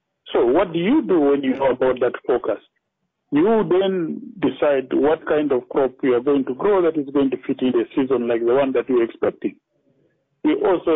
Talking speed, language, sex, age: 215 wpm, English, male, 50-69